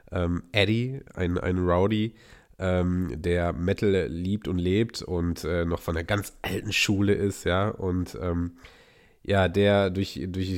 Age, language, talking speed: 30-49, German, 145 wpm